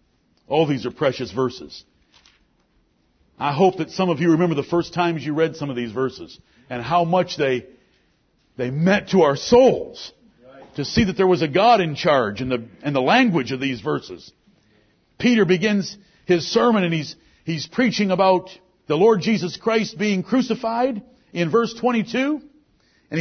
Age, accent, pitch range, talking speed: 50-69, American, 165-240 Hz, 175 wpm